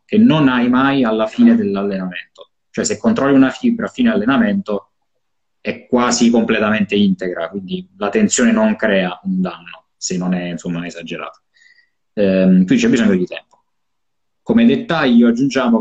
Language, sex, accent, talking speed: Italian, male, native, 150 wpm